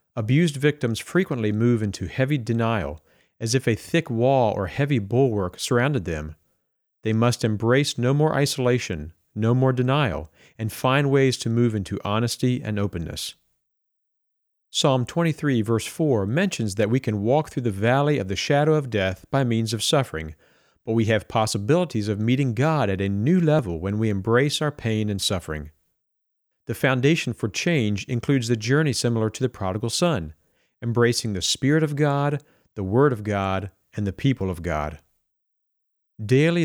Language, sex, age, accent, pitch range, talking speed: English, male, 40-59, American, 100-140 Hz, 165 wpm